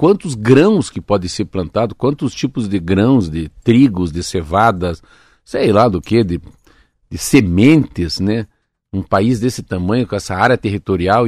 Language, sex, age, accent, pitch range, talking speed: Portuguese, male, 50-69, Brazilian, 95-140 Hz, 160 wpm